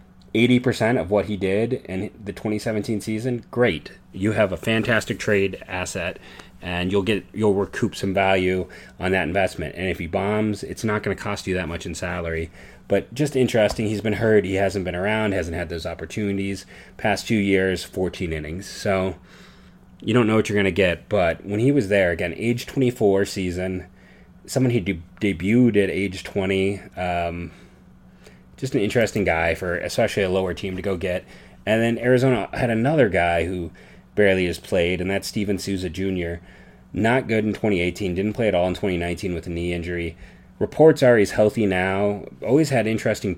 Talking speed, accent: 185 wpm, American